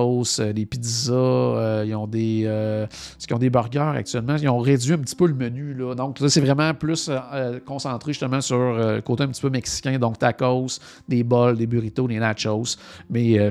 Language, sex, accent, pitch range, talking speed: French, male, Canadian, 110-135 Hz, 210 wpm